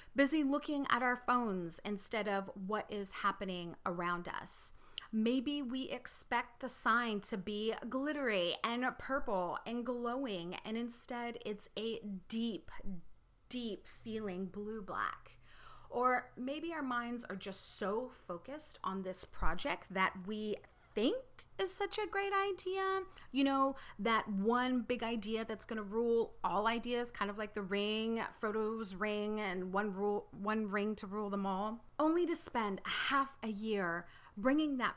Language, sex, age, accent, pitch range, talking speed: English, female, 30-49, American, 200-270 Hz, 150 wpm